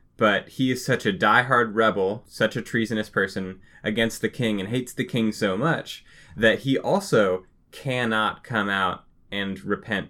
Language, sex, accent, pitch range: English, male, American, 95-115 Hz